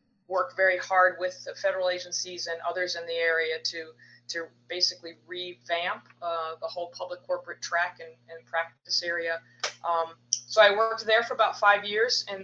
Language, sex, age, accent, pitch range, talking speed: English, female, 20-39, American, 165-190 Hz, 175 wpm